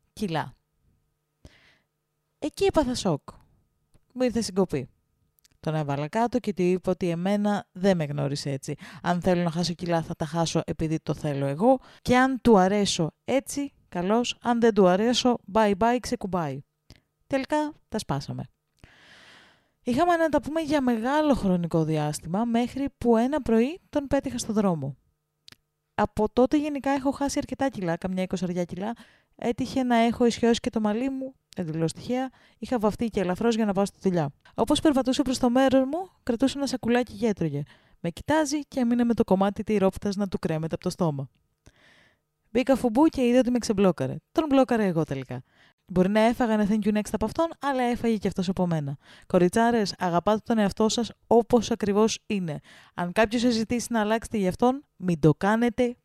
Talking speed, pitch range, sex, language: 170 wpm, 175-250 Hz, female, Greek